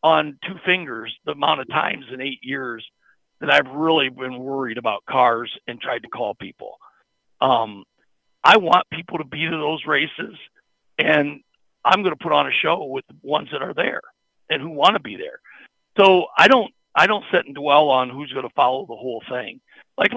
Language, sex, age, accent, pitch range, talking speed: English, male, 50-69, American, 135-190 Hz, 190 wpm